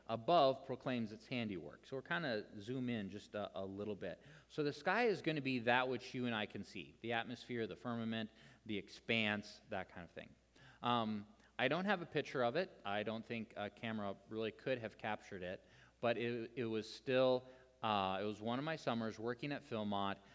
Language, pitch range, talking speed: English, 105-125 Hz, 210 wpm